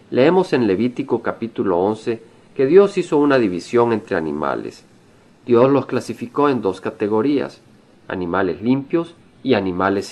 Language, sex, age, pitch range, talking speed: Spanish, male, 50-69, 105-130 Hz, 130 wpm